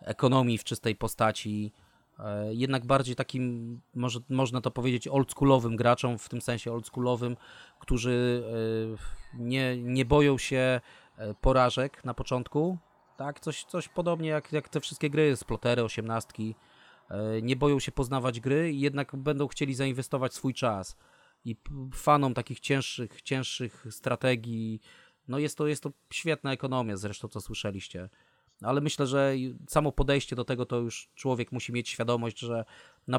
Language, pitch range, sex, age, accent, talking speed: Polish, 110-135 Hz, male, 30-49, native, 135 wpm